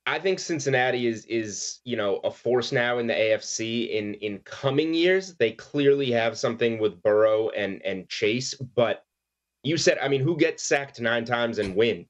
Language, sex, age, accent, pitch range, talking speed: English, male, 30-49, American, 110-145 Hz, 190 wpm